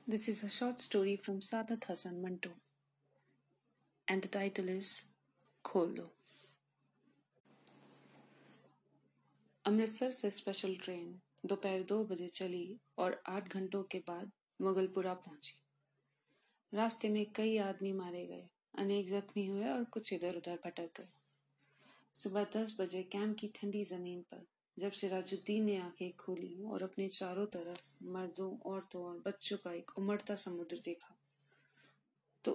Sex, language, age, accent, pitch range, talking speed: female, Hindi, 30-49, native, 175-205 Hz, 125 wpm